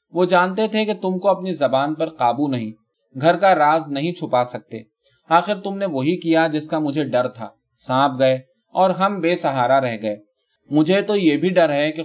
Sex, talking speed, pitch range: male, 120 wpm, 130-175 Hz